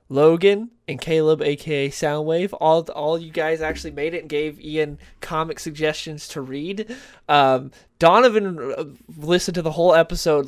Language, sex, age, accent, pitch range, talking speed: English, male, 20-39, American, 140-180 Hz, 150 wpm